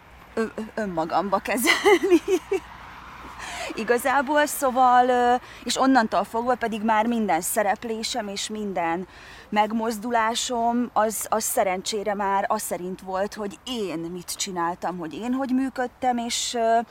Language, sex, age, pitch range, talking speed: Hungarian, female, 20-39, 205-280 Hz, 110 wpm